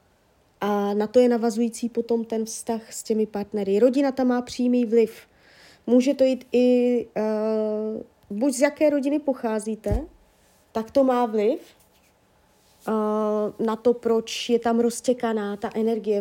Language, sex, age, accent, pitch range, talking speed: Czech, female, 20-39, native, 215-250 Hz, 145 wpm